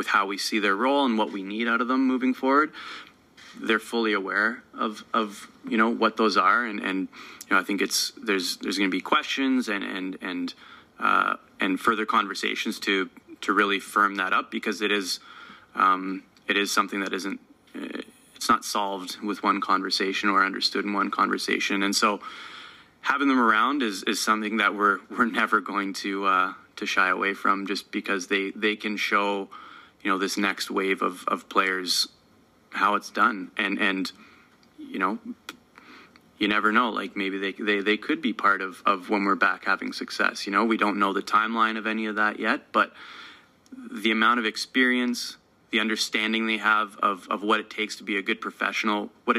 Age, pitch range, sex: 20-39, 100-115 Hz, male